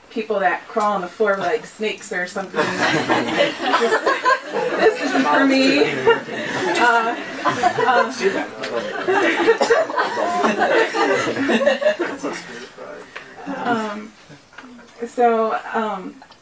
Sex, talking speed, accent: female, 55 wpm, American